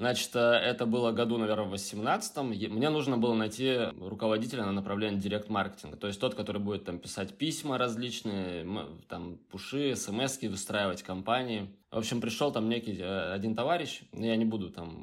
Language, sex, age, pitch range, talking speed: Russian, male, 20-39, 100-120 Hz, 165 wpm